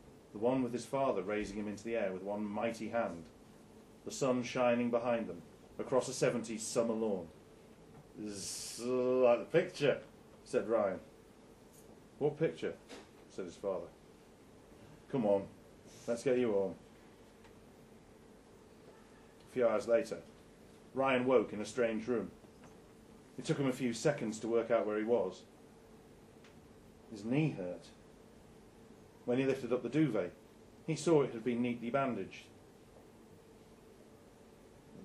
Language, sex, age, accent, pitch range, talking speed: English, male, 40-59, British, 105-130 Hz, 135 wpm